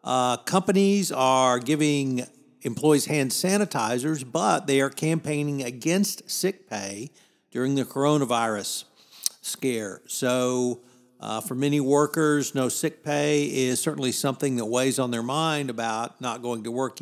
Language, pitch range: English, 115-150 Hz